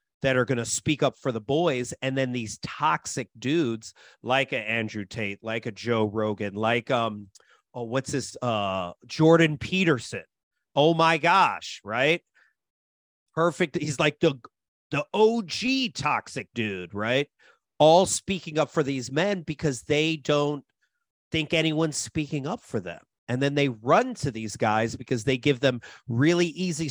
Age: 40-59